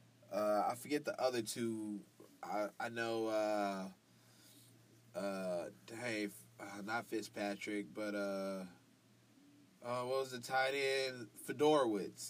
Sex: male